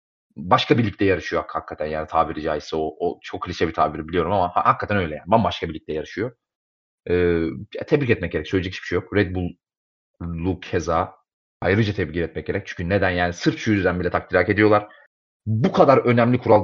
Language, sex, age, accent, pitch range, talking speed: Turkish, male, 30-49, native, 90-130 Hz, 180 wpm